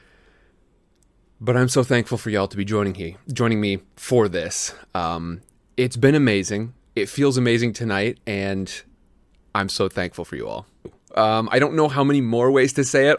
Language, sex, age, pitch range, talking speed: English, male, 30-49, 100-125 Hz, 180 wpm